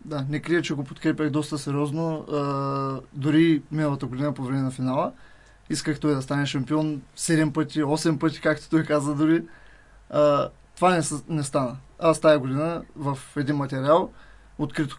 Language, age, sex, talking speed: Bulgarian, 20-39, male, 165 wpm